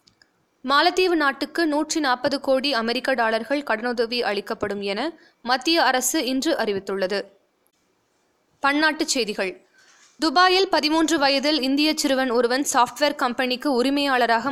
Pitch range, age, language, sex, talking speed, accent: 230-295 Hz, 20-39, Tamil, female, 105 wpm, native